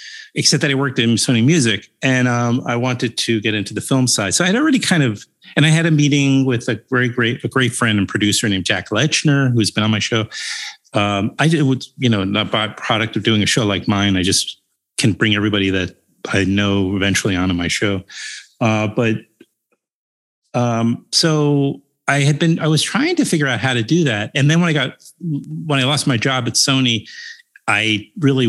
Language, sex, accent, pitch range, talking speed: English, male, American, 105-145 Hz, 215 wpm